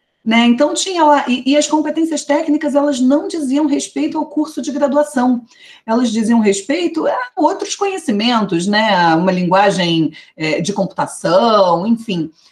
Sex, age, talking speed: female, 40-59, 150 wpm